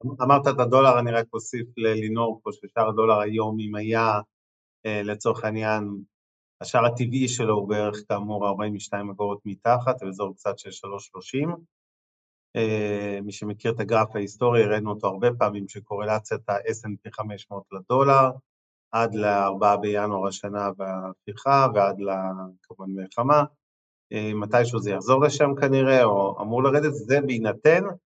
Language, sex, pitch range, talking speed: Hebrew, male, 105-130 Hz, 135 wpm